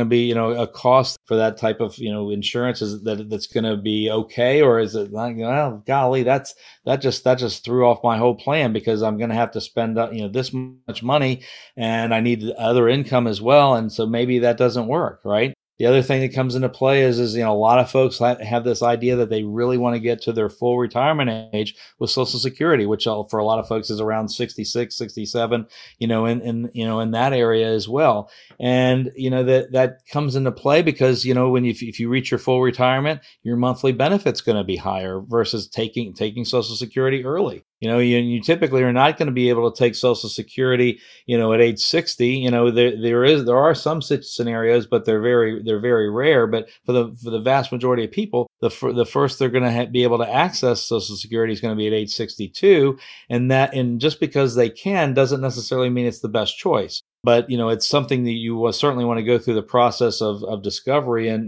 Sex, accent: male, American